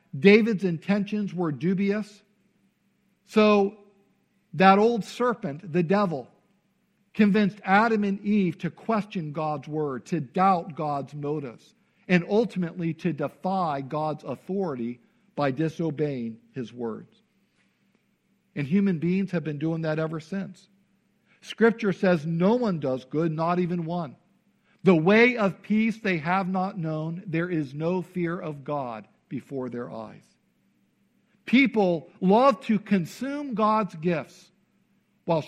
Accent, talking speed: American, 125 wpm